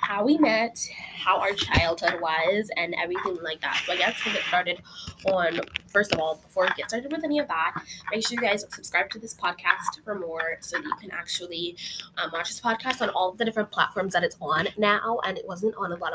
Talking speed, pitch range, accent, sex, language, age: 240 wpm, 170-220 Hz, American, female, English, 10-29